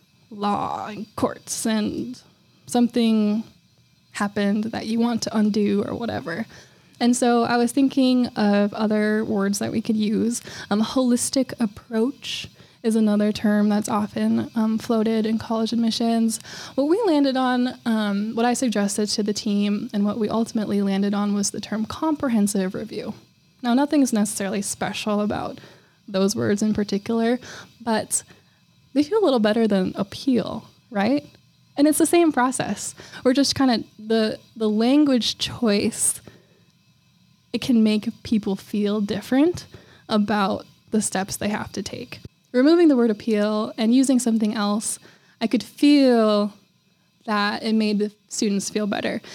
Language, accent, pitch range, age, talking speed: English, American, 210-240 Hz, 10-29, 150 wpm